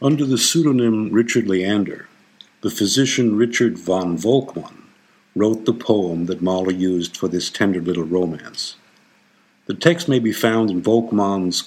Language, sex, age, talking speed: English, male, 50-69, 145 wpm